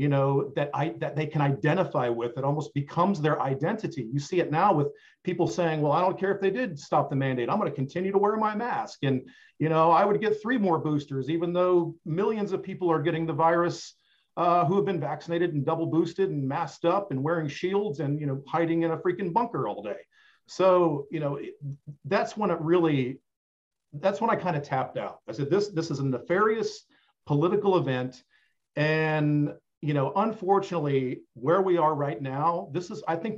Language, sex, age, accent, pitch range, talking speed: English, male, 40-59, American, 145-180 Hz, 210 wpm